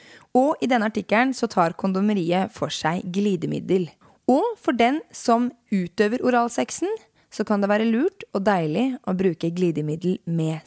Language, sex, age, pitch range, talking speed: English, female, 20-39, 180-245 Hz, 150 wpm